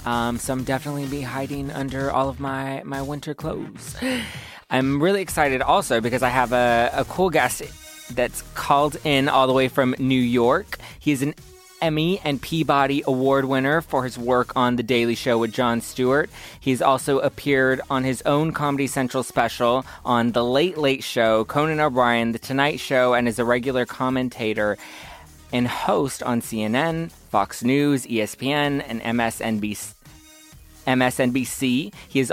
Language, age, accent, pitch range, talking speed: English, 20-39, American, 120-140 Hz, 160 wpm